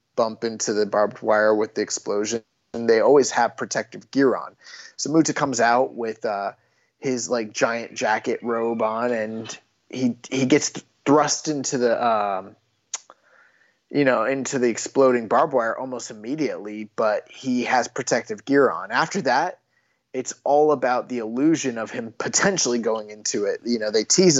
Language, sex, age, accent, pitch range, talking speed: English, male, 20-39, American, 115-150 Hz, 165 wpm